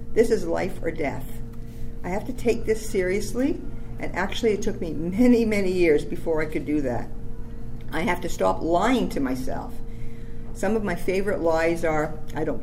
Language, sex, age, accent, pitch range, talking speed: English, female, 50-69, American, 120-195 Hz, 185 wpm